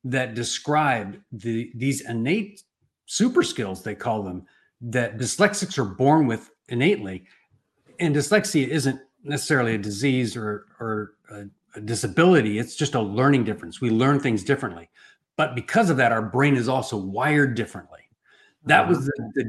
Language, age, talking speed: English, 40-59, 155 wpm